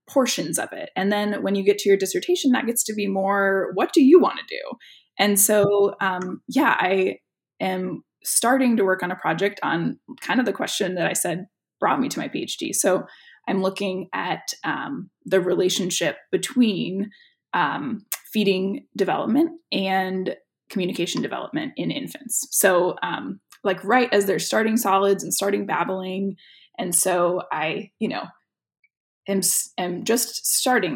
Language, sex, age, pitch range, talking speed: English, female, 10-29, 185-230 Hz, 160 wpm